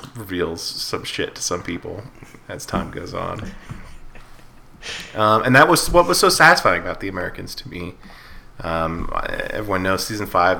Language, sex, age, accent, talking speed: English, male, 20-39, American, 160 wpm